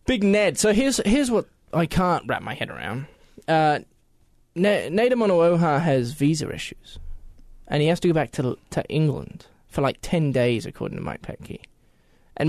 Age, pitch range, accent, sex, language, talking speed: 20-39, 120-170 Hz, Australian, male, English, 190 wpm